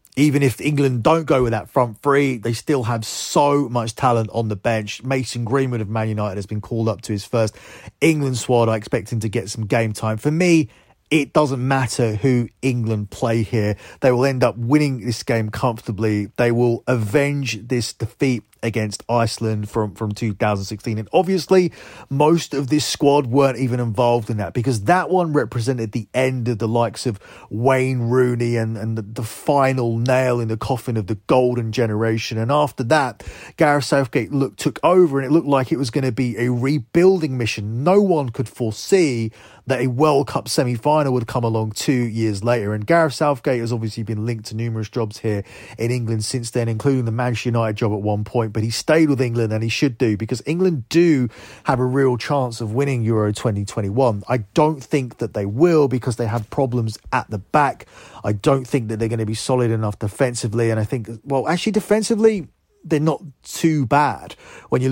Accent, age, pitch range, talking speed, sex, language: British, 30-49, 110-140 Hz, 200 wpm, male, English